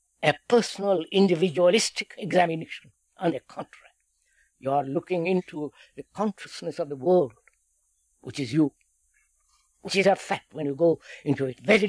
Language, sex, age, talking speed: English, female, 60-79, 145 wpm